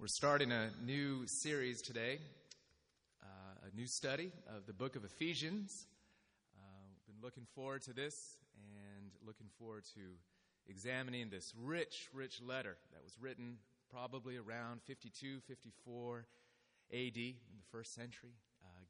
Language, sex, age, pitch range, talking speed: English, male, 30-49, 105-135 Hz, 140 wpm